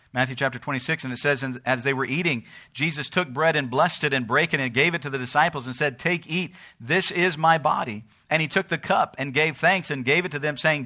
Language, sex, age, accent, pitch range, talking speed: English, male, 50-69, American, 125-155 Hz, 265 wpm